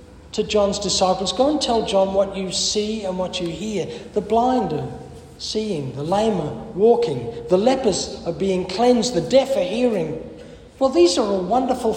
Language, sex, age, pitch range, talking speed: English, male, 60-79, 155-245 Hz, 180 wpm